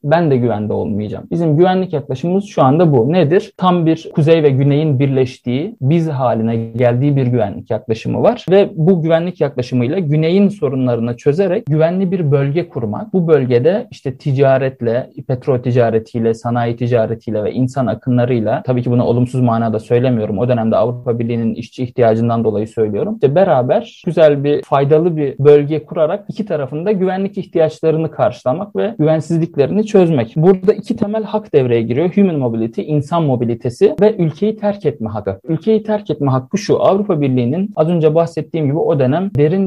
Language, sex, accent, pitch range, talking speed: Turkish, male, native, 125-175 Hz, 160 wpm